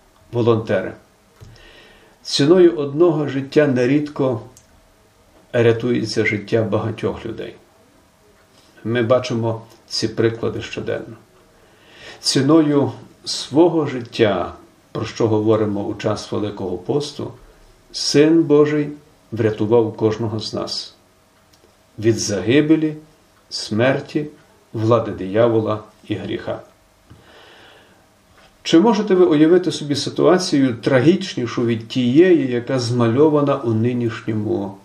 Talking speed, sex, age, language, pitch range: 85 wpm, male, 50-69, Ukrainian, 110-145 Hz